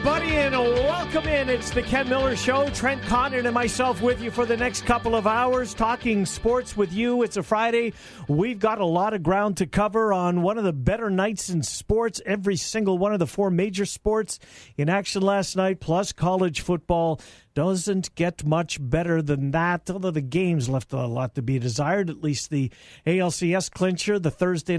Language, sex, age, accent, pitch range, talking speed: English, male, 50-69, American, 160-210 Hz, 200 wpm